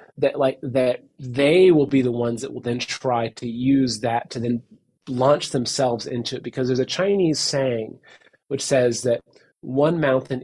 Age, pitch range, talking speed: 30-49, 120-145 Hz, 180 wpm